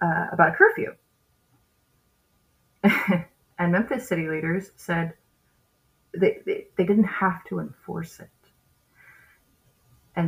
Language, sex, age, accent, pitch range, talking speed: English, female, 20-39, American, 170-205 Hz, 105 wpm